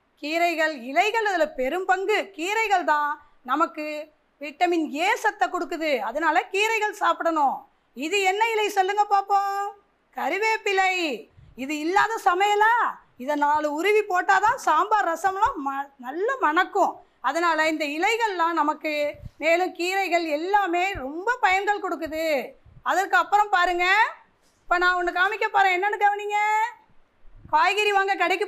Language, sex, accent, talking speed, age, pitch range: Tamil, female, native, 120 wpm, 20-39, 330-415 Hz